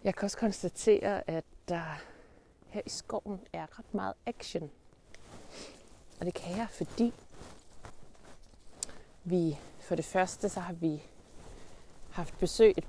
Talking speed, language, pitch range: 135 wpm, Danish, 165-210 Hz